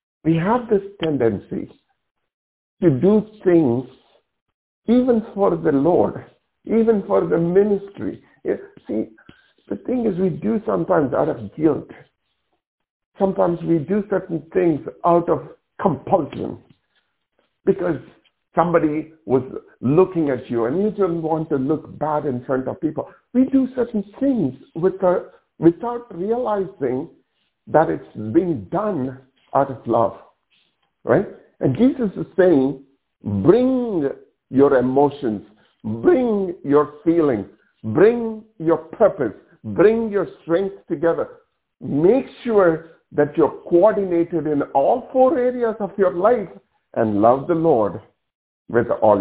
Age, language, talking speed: 60-79, English, 120 wpm